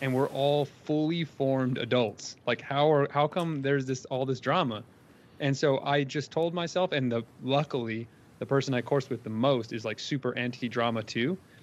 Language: English